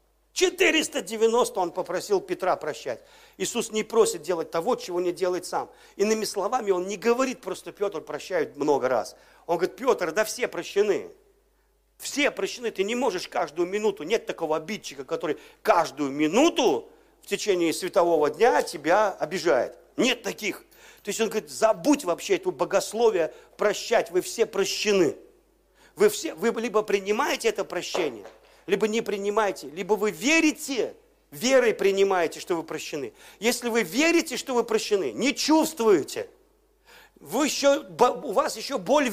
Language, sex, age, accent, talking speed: Russian, male, 50-69, native, 145 wpm